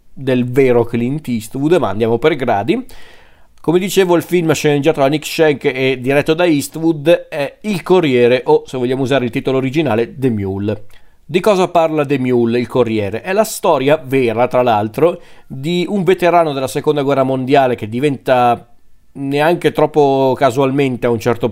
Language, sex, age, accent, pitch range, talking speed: Italian, male, 40-59, native, 120-150 Hz, 165 wpm